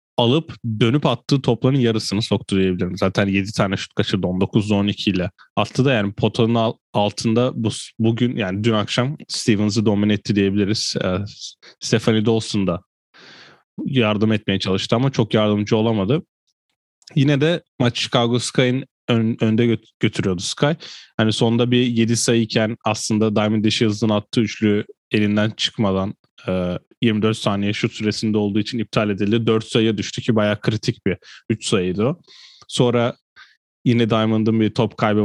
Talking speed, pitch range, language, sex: 145 wpm, 105-120 Hz, Turkish, male